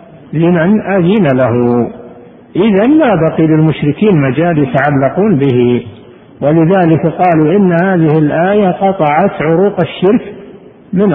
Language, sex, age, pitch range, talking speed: Arabic, male, 50-69, 145-185 Hz, 115 wpm